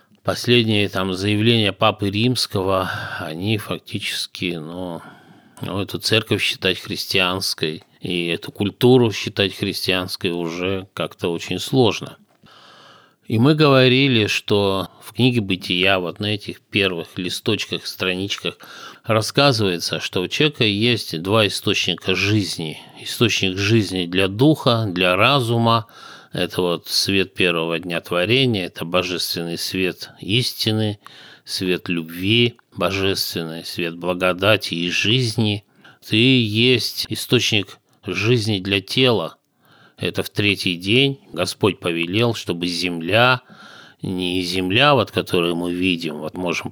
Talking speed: 110 wpm